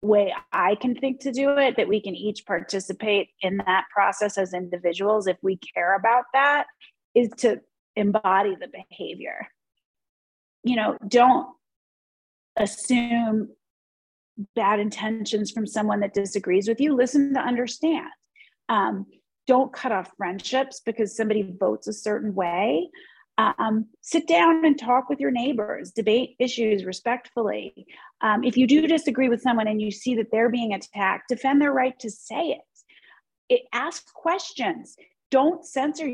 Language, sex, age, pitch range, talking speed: English, female, 30-49, 210-265 Hz, 150 wpm